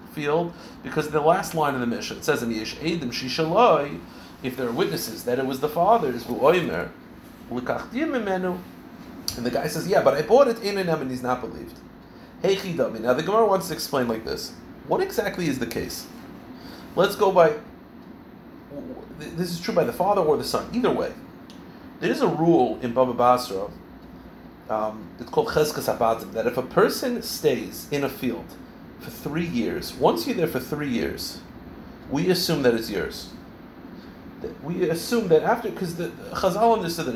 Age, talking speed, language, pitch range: 40-59, 165 wpm, English, 120-190 Hz